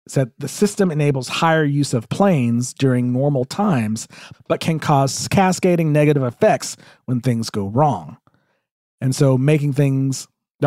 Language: English